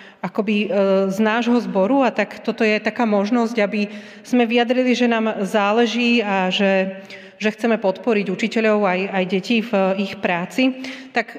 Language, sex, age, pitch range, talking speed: Slovak, female, 30-49, 195-230 Hz, 155 wpm